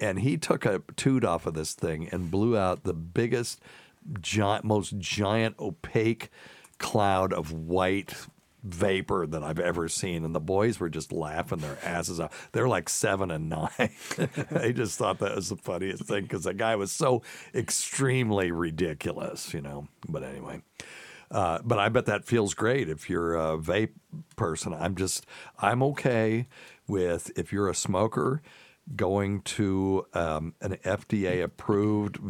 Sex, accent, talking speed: male, American, 160 wpm